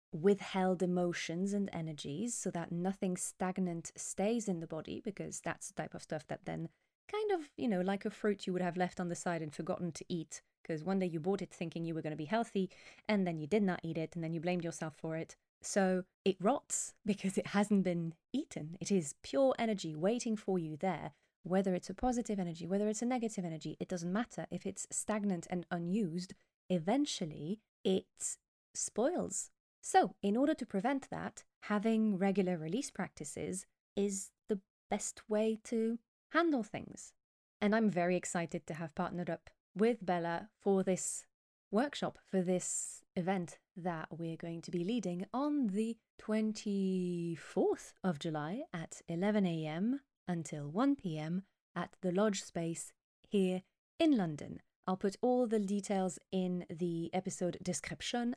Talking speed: 170 wpm